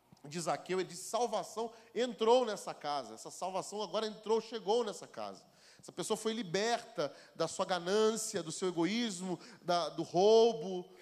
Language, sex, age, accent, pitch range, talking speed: Portuguese, male, 30-49, Brazilian, 175-235 Hz, 145 wpm